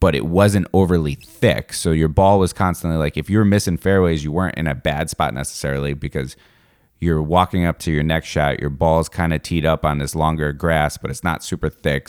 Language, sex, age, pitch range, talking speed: English, male, 30-49, 75-90 Hz, 225 wpm